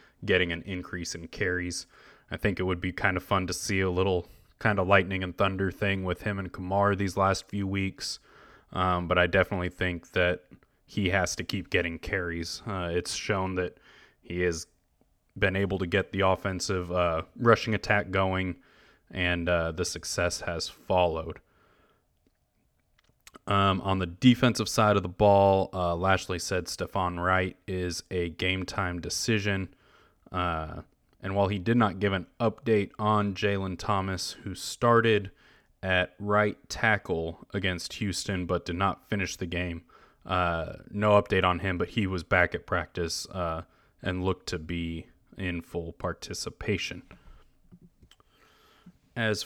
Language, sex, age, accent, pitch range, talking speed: English, male, 20-39, American, 90-100 Hz, 155 wpm